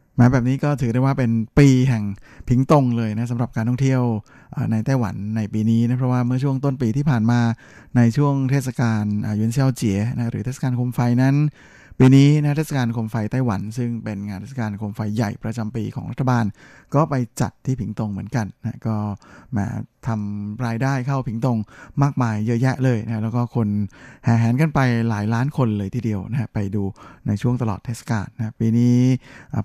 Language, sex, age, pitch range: Thai, male, 20-39, 110-130 Hz